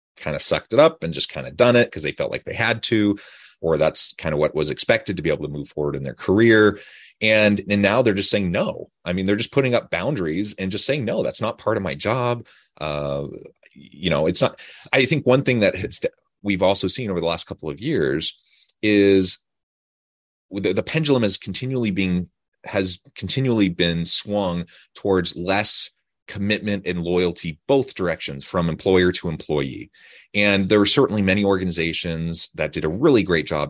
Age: 30-49